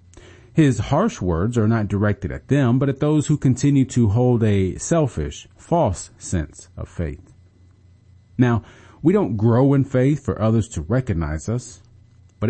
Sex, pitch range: male, 90-125 Hz